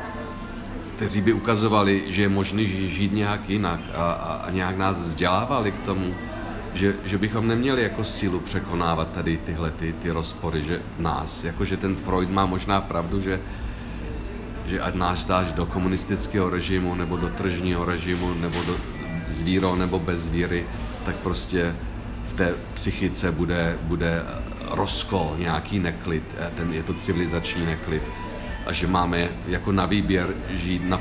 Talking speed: 145 wpm